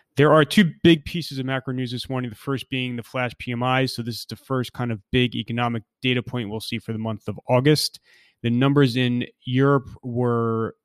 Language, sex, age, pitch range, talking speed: English, male, 30-49, 115-130 Hz, 215 wpm